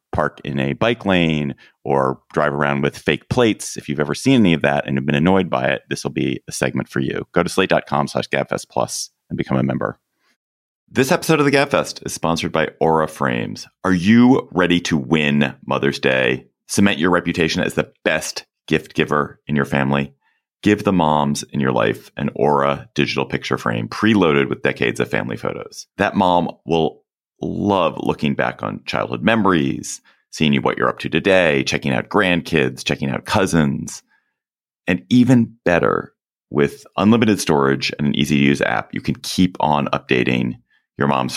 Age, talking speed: 30-49, 185 wpm